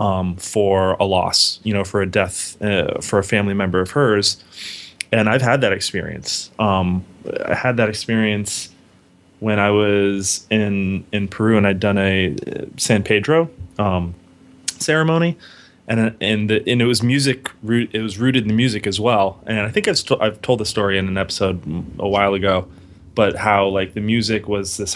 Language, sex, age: English, male, 20-39